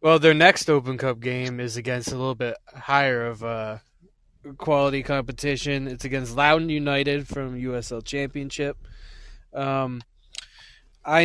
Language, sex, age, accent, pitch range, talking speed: English, male, 20-39, American, 125-150 Hz, 140 wpm